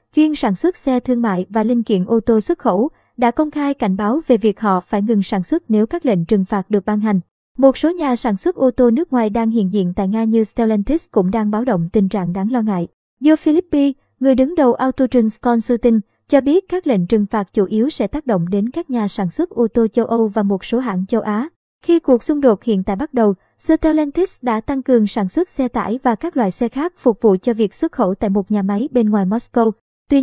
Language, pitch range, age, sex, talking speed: Vietnamese, 215-265 Hz, 20-39, male, 250 wpm